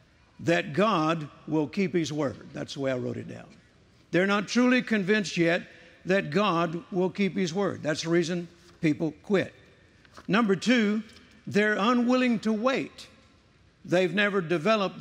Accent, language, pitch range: American, English, 155-200 Hz